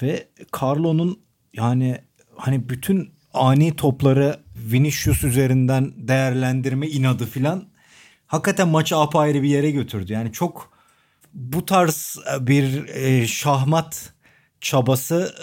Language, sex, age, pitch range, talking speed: Turkish, male, 40-59, 115-145 Hz, 95 wpm